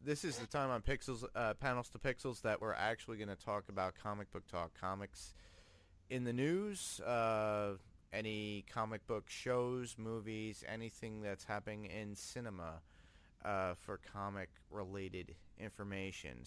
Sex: male